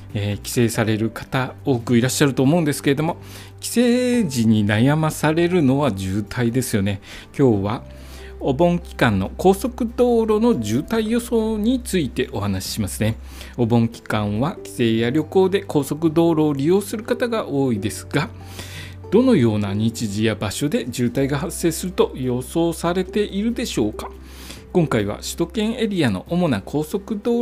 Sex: male